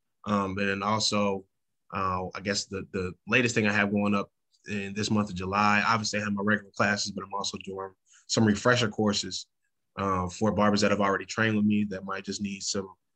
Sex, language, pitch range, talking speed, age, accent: male, English, 100-110 Hz, 210 wpm, 20-39, American